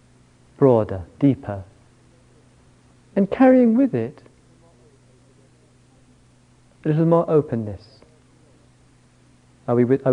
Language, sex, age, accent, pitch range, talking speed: English, male, 50-69, British, 120-160 Hz, 75 wpm